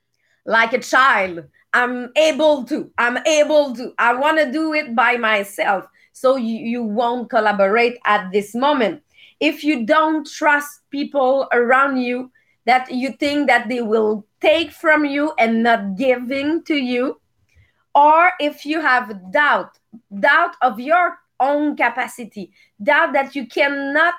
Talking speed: 145 wpm